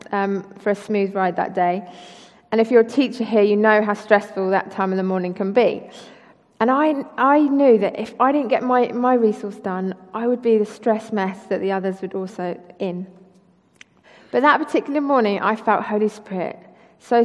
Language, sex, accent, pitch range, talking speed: English, female, British, 195-245 Hz, 210 wpm